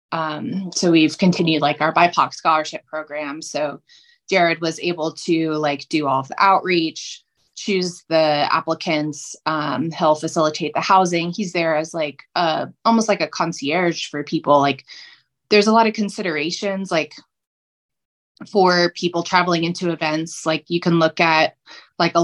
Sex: female